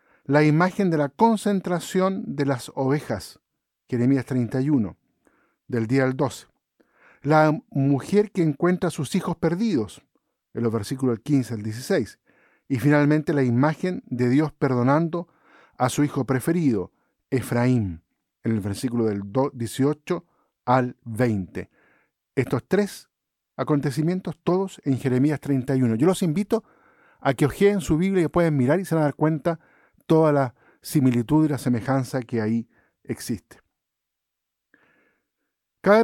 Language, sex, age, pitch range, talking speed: Spanish, male, 50-69, 130-175 Hz, 135 wpm